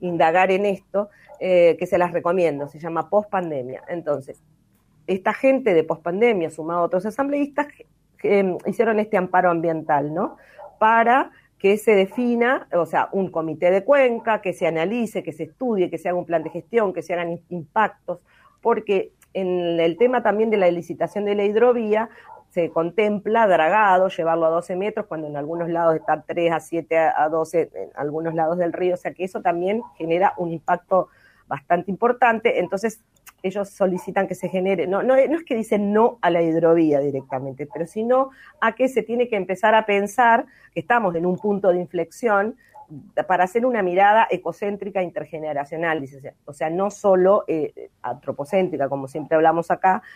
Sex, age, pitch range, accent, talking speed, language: female, 40-59, 165-215 Hz, Argentinian, 175 wpm, Spanish